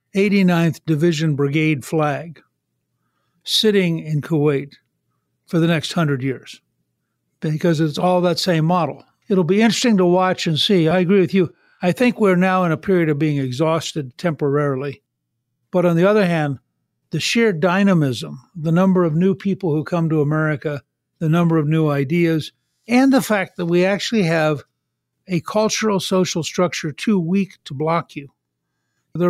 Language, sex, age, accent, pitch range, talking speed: English, male, 60-79, American, 150-185 Hz, 160 wpm